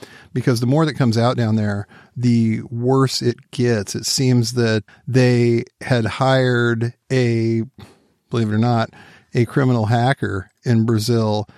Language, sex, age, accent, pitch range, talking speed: English, male, 50-69, American, 115-130 Hz, 145 wpm